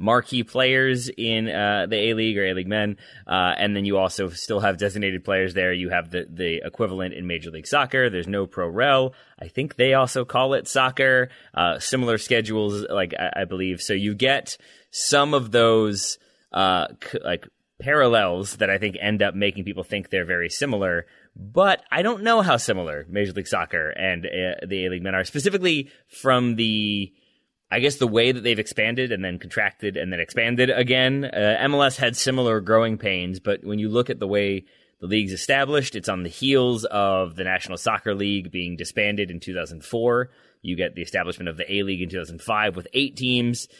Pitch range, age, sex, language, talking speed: 95-125 Hz, 30-49, male, English, 190 wpm